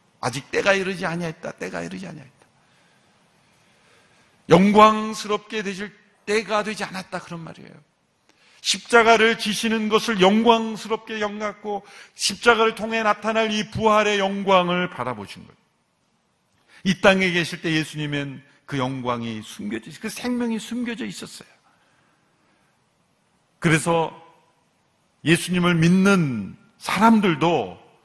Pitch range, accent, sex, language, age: 155-215 Hz, native, male, Korean, 50-69